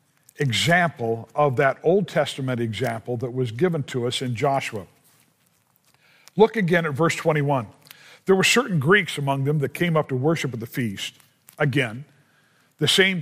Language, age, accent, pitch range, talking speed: English, 50-69, American, 135-175 Hz, 160 wpm